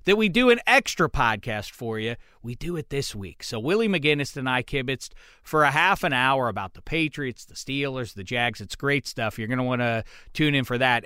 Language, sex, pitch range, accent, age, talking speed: English, male, 120-155 Hz, American, 40-59, 235 wpm